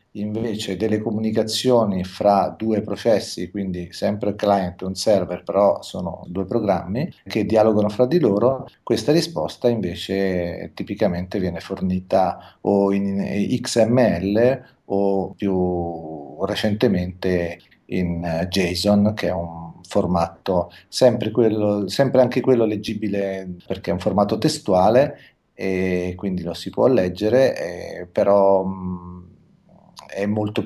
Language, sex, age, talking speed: Italian, male, 40-59, 110 wpm